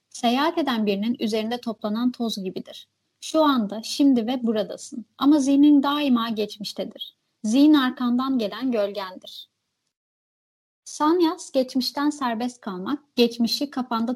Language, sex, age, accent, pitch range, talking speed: Turkish, female, 30-49, native, 225-280 Hz, 110 wpm